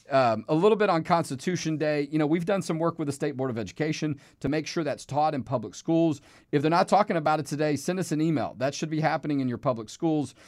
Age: 40-59